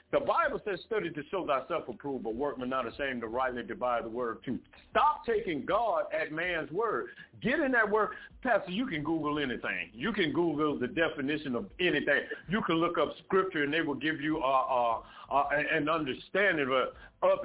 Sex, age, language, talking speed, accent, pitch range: male, 60-79, English, 200 wpm, American, 155-215 Hz